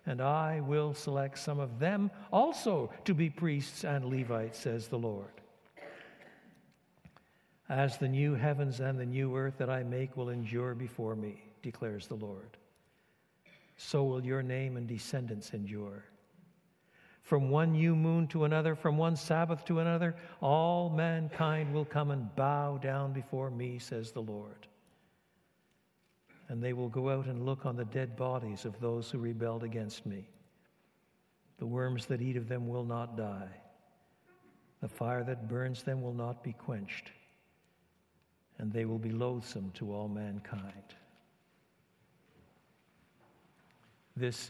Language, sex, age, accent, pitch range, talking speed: English, male, 60-79, American, 115-150 Hz, 145 wpm